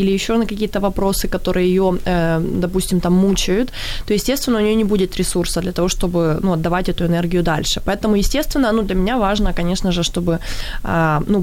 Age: 20-39